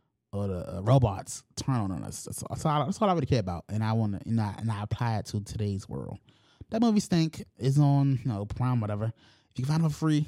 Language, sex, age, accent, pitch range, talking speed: English, male, 20-39, American, 105-135 Hz, 270 wpm